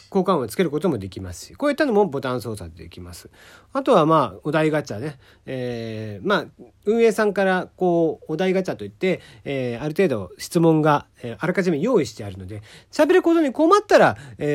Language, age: Japanese, 40-59